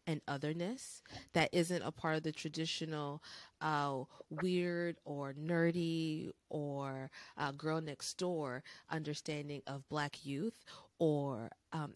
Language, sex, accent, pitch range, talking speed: English, female, American, 150-180 Hz, 120 wpm